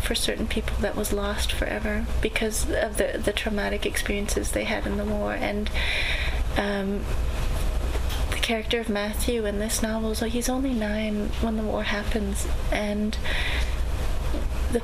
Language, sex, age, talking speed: English, female, 30-49, 150 wpm